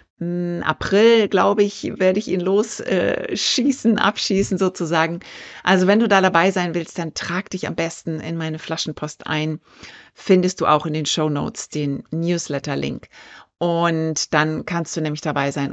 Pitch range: 155-200 Hz